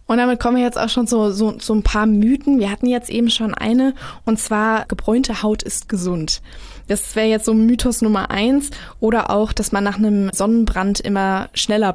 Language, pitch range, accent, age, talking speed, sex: German, 200-230 Hz, German, 20-39, 210 wpm, female